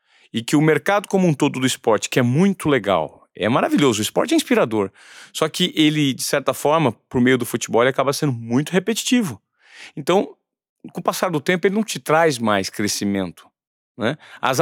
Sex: male